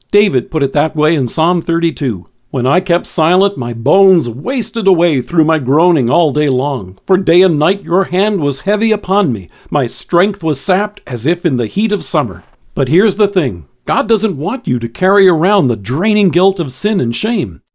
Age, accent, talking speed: 50-69, American, 205 wpm